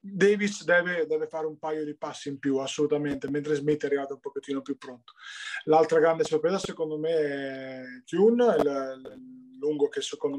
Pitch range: 150-200 Hz